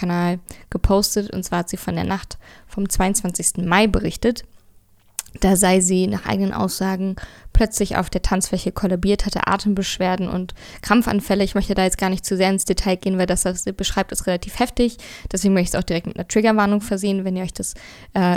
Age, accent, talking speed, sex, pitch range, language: 20-39, German, 205 wpm, female, 185-205 Hz, German